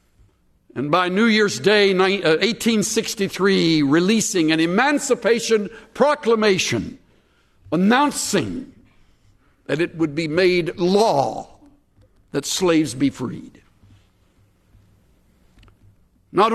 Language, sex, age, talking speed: English, male, 60-79, 80 wpm